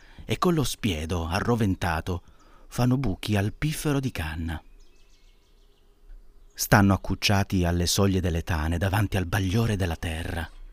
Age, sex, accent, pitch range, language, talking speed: 30-49, male, native, 90-120 Hz, Italian, 125 wpm